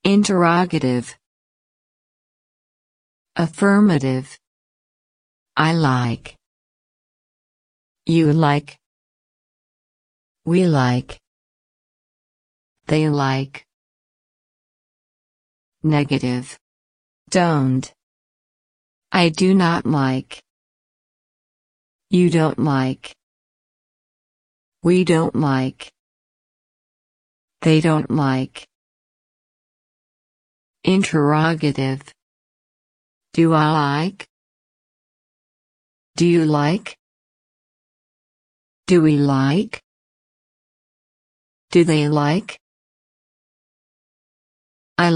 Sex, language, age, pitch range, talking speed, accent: female, English, 50-69, 135-170 Hz, 50 wpm, American